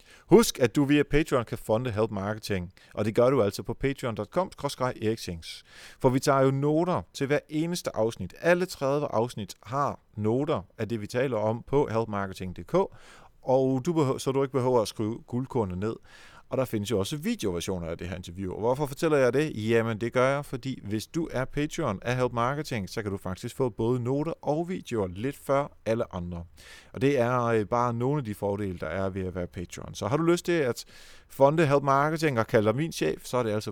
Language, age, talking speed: Danish, 30-49, 210 wpm